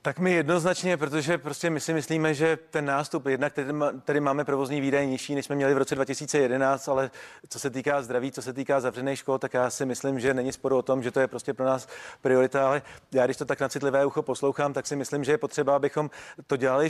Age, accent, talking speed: 40-59, native, 235 wpm